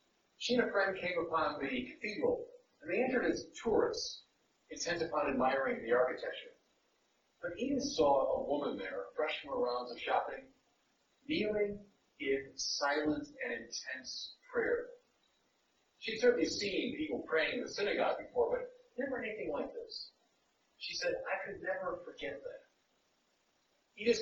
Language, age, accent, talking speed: English, 40-59, American, 145 wpm